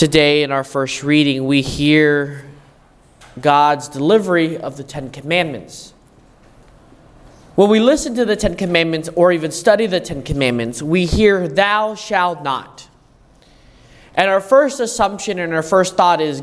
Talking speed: 145 wpm